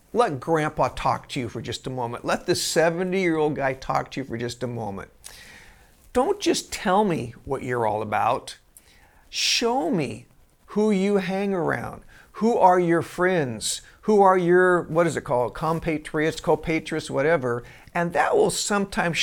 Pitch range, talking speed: 140-190 Hz, 160 wpm